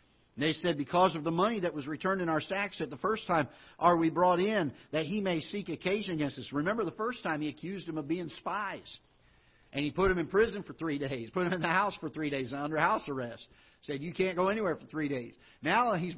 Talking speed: 250 wpm